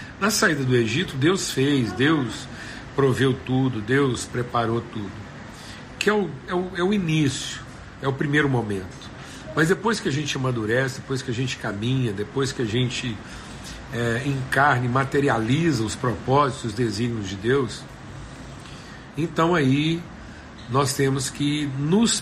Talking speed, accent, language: 140 wpm, Brazilian, Portuguese